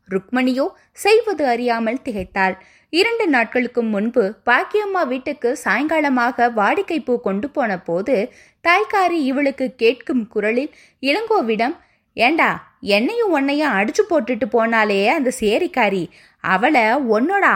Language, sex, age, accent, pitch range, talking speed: Tamil, female, 20-39, native, 200-325 Hz, 90 wpm